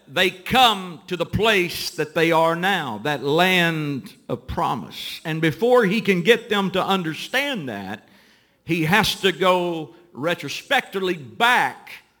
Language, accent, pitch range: English, American, 165-225 Hz